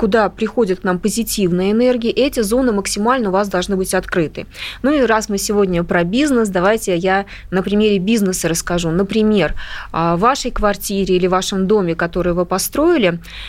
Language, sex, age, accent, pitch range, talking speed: Russian, female, 20-39, native, 185-235 Hz, 170 wpm